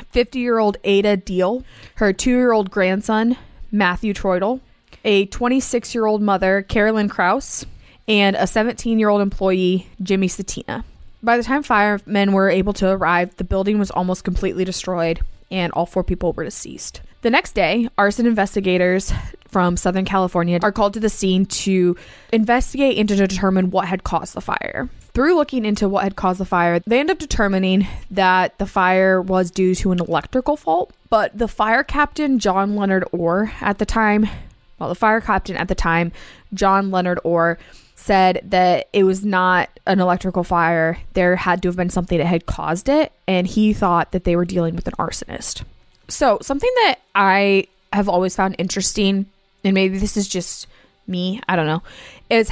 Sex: female